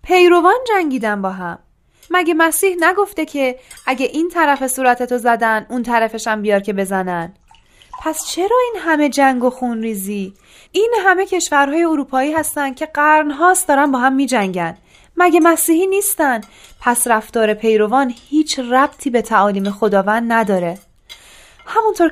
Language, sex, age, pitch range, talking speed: Persian, female, 10-29, 225-310 Hz, 135 wpm